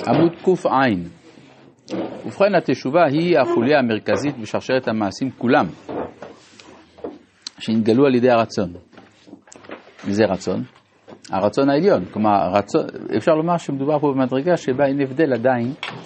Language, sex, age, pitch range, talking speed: Hebrew, male, 50-69, 110-160 Hz, 110 wpm